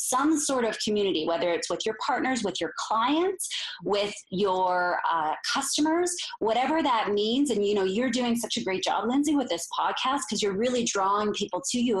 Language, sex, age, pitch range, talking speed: English, female, 20-39, 180-250 Hz, 195 wpm